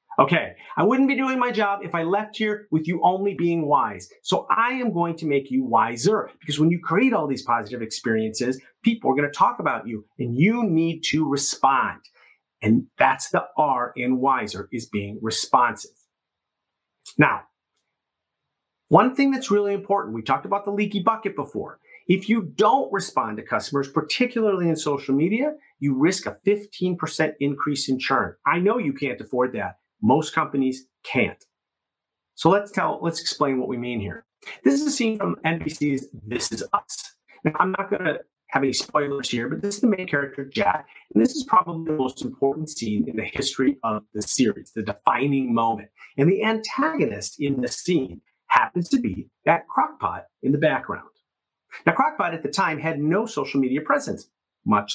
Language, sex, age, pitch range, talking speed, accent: English, male, 40-59, 135-210 Hz, 180 wpm, American